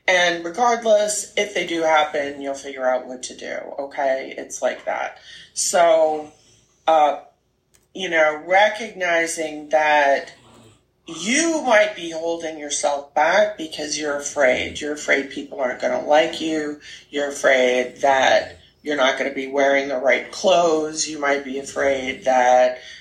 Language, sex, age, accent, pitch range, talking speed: English, female, 30-49, American, 140-185 Hz, 145 wpm